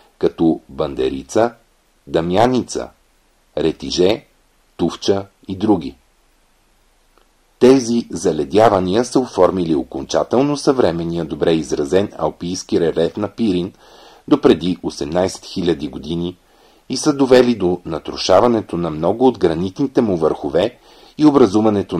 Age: 40-59